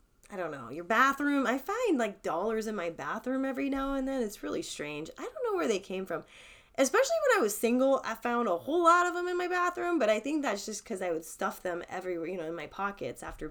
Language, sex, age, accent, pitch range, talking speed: English, female, 20-39, American, 205-285 Hz, 260 wpm